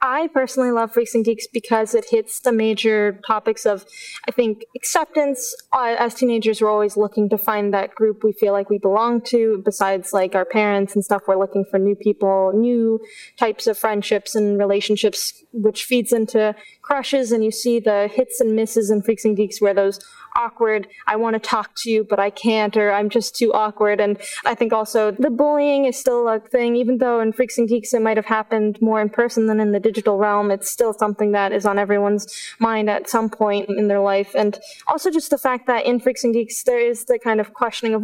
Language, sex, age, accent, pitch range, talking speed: English, female, 20-39, American, 210-240 Hz, 220 wpm